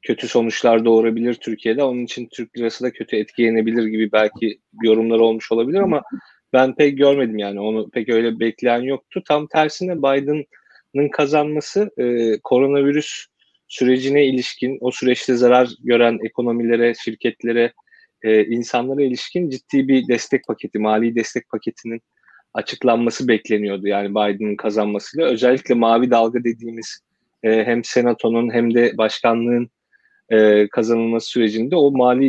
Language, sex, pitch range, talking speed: Turkish, male, 110-140 Hz, 125 wpm